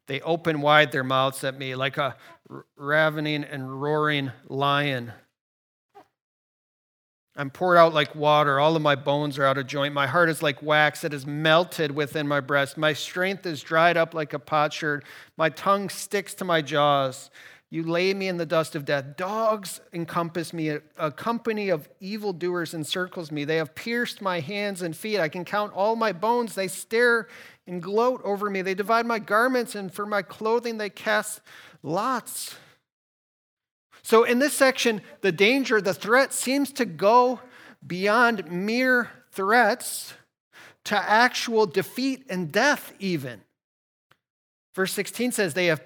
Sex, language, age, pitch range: male, English, 40-59, 150-210 Hz